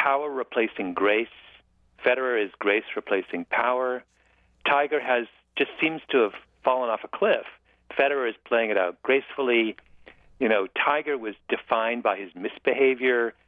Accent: American